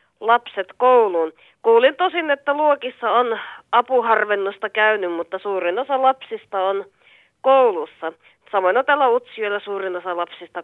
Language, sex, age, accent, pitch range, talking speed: Finnish, female, 30-49, native, 190-275 Hz, 125 wpm